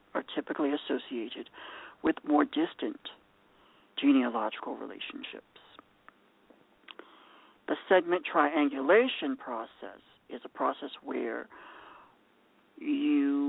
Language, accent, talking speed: English, American, 75 wpm